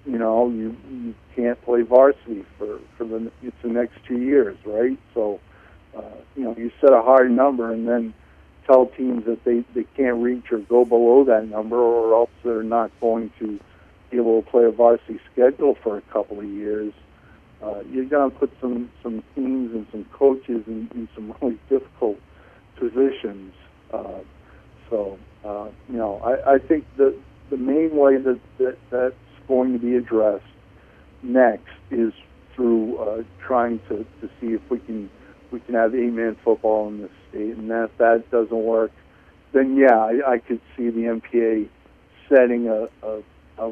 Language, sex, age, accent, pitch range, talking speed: English, male, 60-79, American, 110-125 Hz, 180 wpm